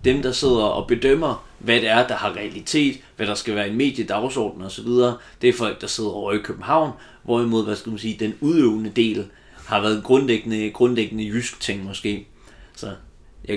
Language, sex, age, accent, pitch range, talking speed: Danish, male, 30-49, native, 105-120 Hz, 200 wpm